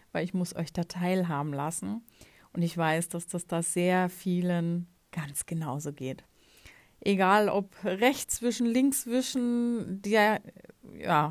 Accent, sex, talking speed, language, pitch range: German, female, 135 wpm, German, 170-205 Hz